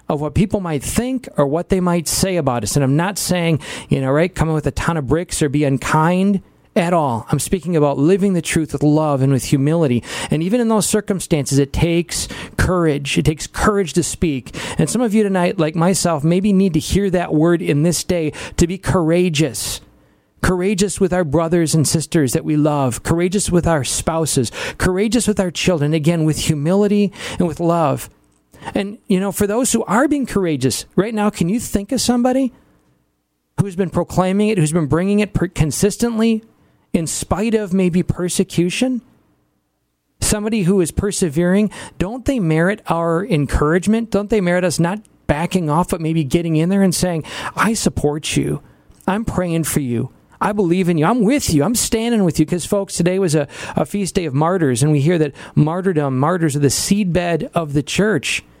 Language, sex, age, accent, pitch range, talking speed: English, male, 40-59, American, 155-195 Hz, 195 wpm